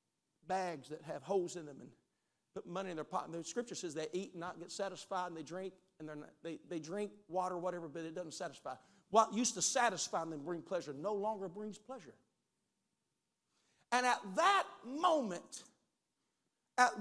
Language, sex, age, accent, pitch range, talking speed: English, male, 50-69, American, 185-235 Hz, 180 wpm